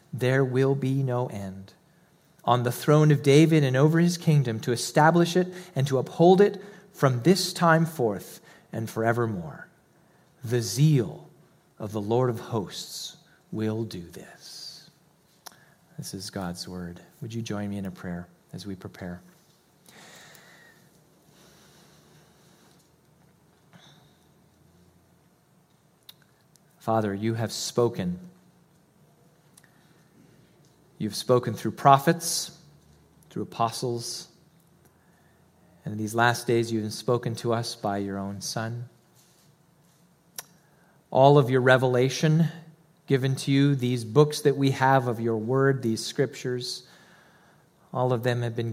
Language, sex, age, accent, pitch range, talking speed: English, male, 40-59, American, 115-165 Hz, 120 wpm